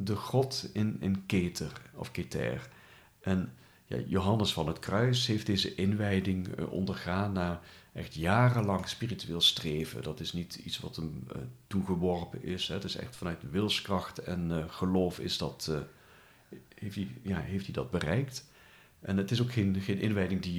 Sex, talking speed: male, 170 wpm